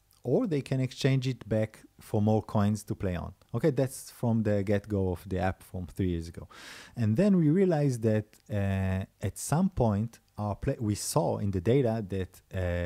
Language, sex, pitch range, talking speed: English, male, 95-125 Hz, 195 wpm